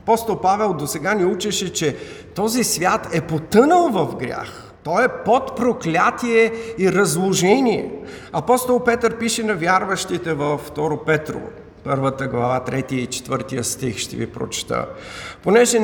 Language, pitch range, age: Bulgarian, 145-220 Hz, 50-69